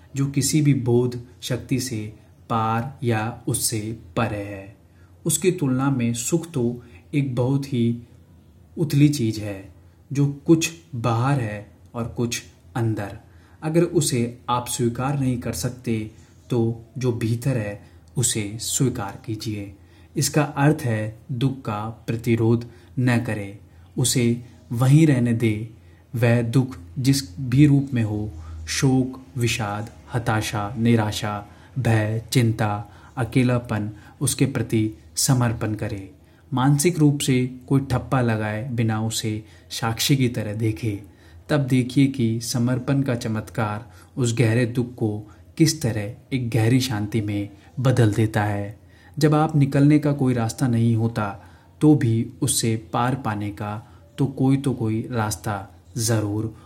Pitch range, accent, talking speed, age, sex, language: 105-130 Hz, native, 130 wpm, 30-49, male, Hindi